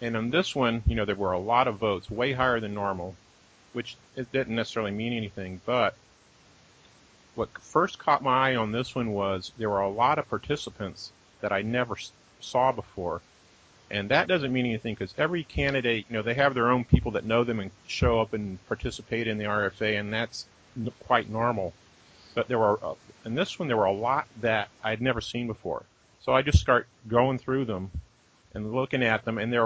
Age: 40-59